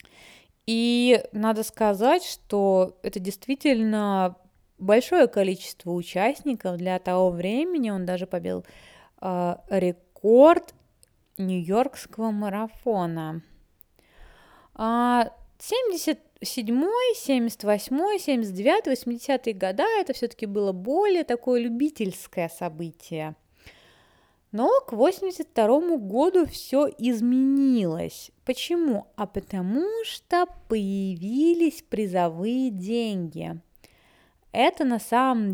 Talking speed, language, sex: 80 wpm, Russian, female